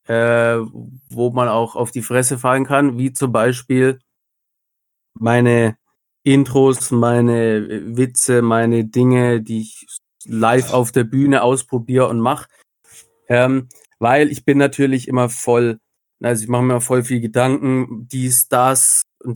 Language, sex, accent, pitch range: German, male, German, 115-130 Hz